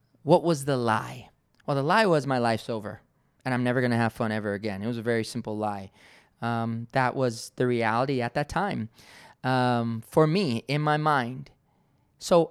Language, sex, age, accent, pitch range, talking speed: English, male, 20-39, American, 120-160 Hz, 195 wpm